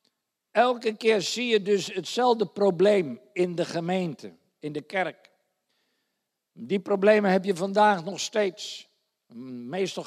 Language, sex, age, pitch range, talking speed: Dutch, male, 50-69, 160-200 Hz, 125 wpm